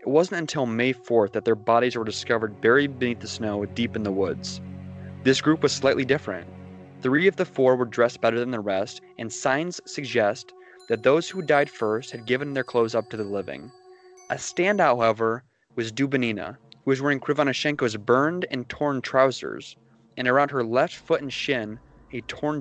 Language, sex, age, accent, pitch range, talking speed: English, male, 20-39, American, 110-145 Hz, 190 wpm